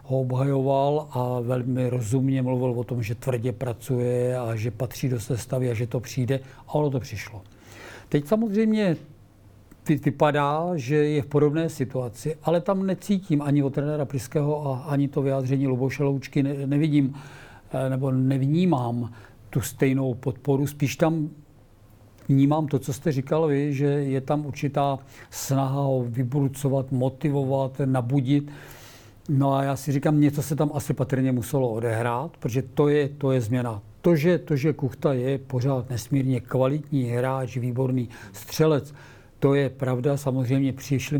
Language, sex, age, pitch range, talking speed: Czech, male, 50-69, 125-145 Hz, 145 wpm